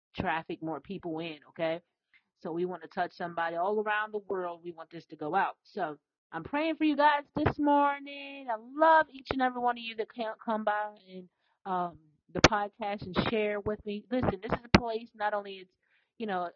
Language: English